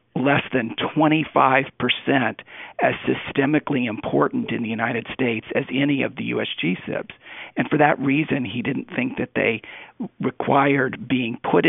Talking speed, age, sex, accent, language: 145 wpm, 50-69, male, American, English